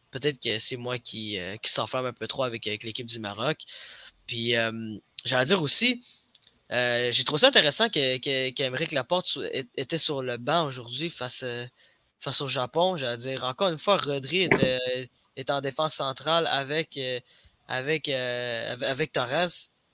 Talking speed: 170 wpm